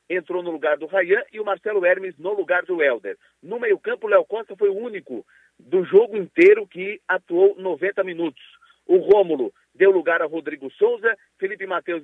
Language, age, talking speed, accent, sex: Portuguese, 50-69, 190 wpm, Brazilian, male